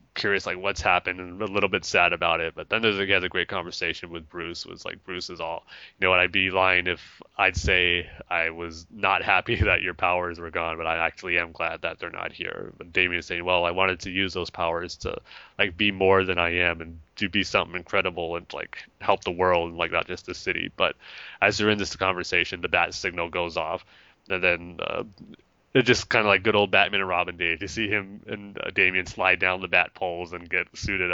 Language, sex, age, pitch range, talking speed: English, male, 20-39, 85-95 Hz, 240 wpm